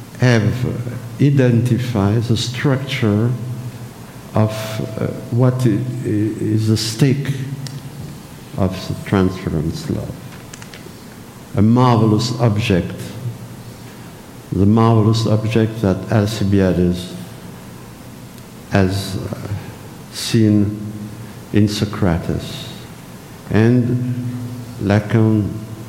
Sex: male